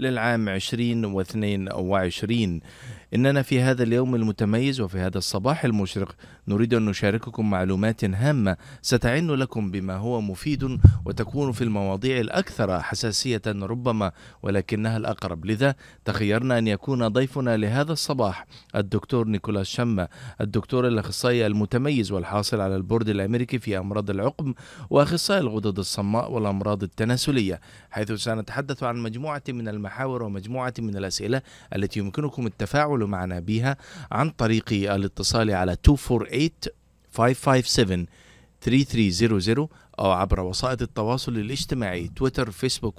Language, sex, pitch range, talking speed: Arabic, male, 100-125 Hz, 115 wpm